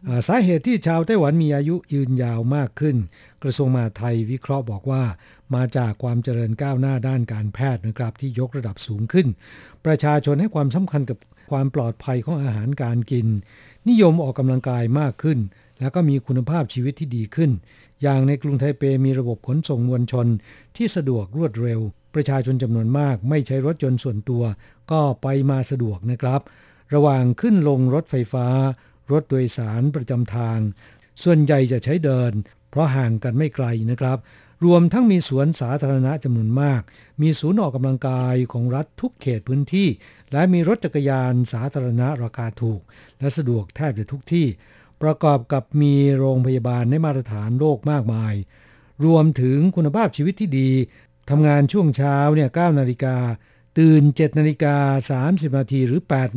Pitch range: 120-150 Hz